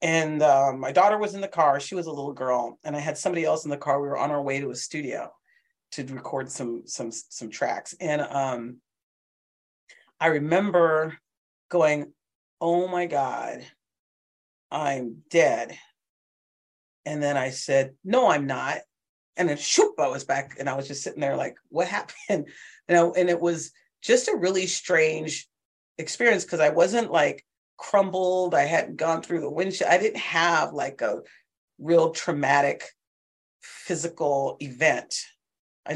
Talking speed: 165 wpm